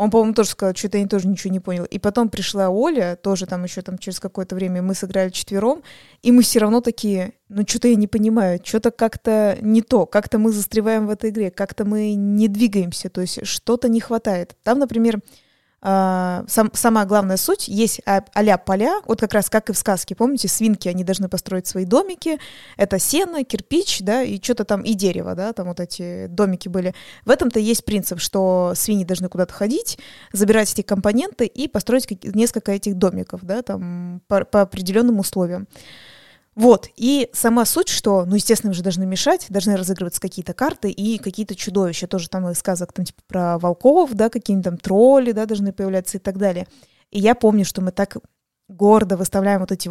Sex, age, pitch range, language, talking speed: female, 20-39, 190-225 Hz, Russian, 190 wpm